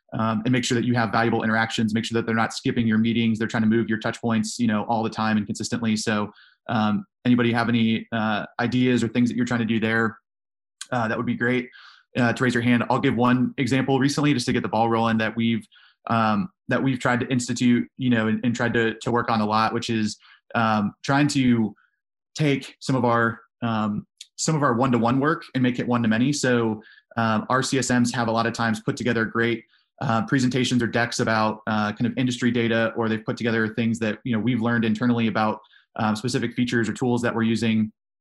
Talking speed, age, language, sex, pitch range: 230 wpm, 20-39, English, male, 110-125 Hz